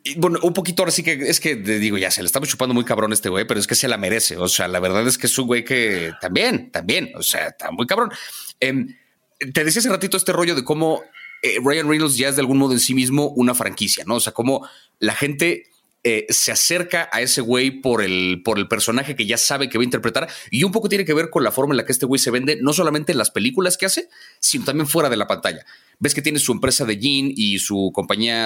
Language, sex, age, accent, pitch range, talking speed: Spanish, male, 30-49, Mexican, 115-155 Hz, 270 wpm